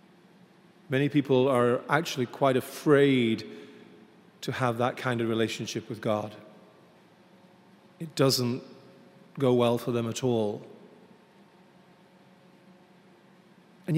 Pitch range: 130-180 Hz